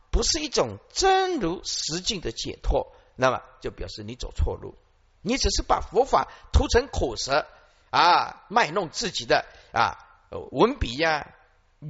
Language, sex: Chinese, male